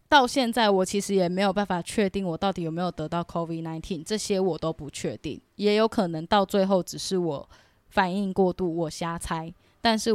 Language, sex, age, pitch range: Chinese, female, 10-29, 170-205 Hz